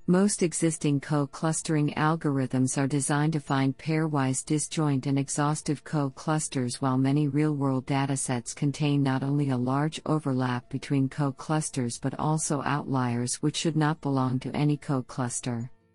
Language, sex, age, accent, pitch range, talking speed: English, female, 50-69, American, 135-160 Hz, 130 wpm